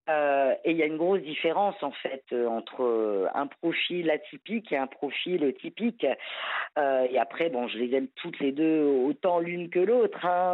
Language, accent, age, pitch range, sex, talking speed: French, French, 40-59, 150-180 Hz, female, 190 wpm